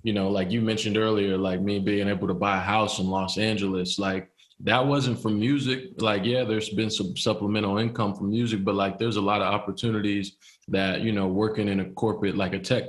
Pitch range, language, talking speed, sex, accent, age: 100-115 Hz, English, 225 wpm, male, American, 20-39